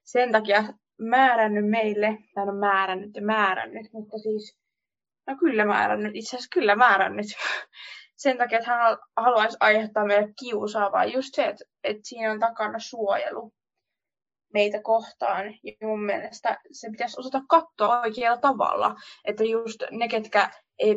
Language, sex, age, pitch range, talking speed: Finnish, female, 20-39, 210-255 Hz, 145 wpm